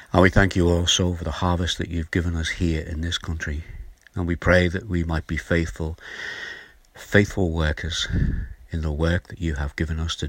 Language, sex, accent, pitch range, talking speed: English, male, British, 75-90 Hz, 205 wpm